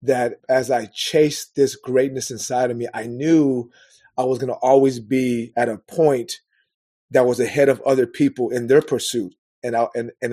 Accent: American